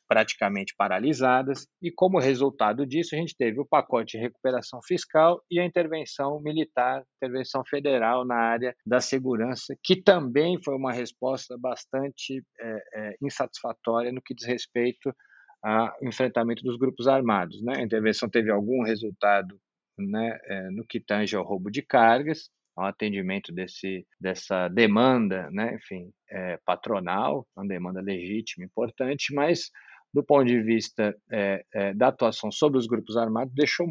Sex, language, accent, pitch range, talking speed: male, Portuguese, Brazilian, 110-140 Hz, 145 wpm